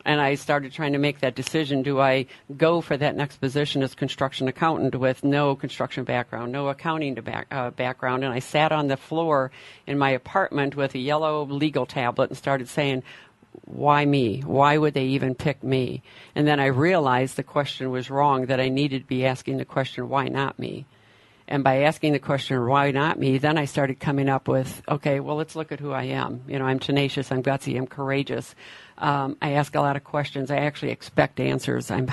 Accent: American